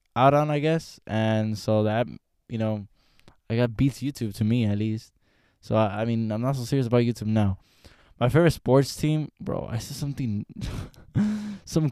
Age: 20-39